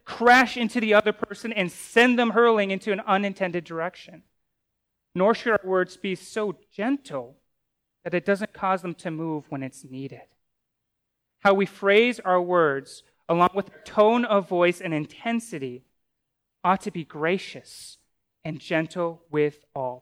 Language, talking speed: English, 150 wpm